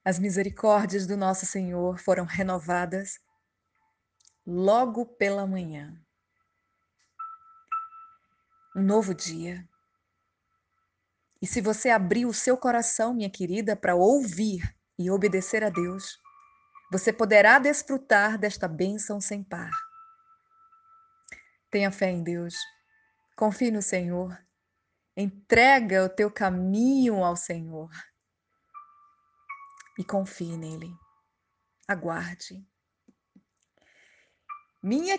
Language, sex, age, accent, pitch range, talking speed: Portuguese, female, 20-39, Brazilian, 175-270 Hz, 90 wpm